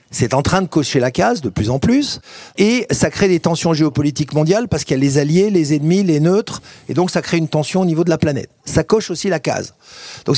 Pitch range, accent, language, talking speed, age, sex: 140-185 Hz, French, French, 260 wpm, 50-69, male